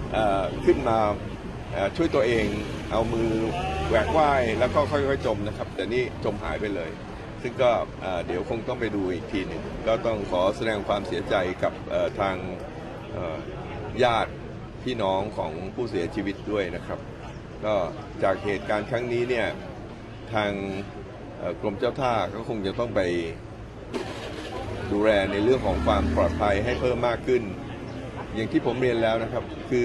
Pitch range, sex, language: 105-120 Hz, male, Thai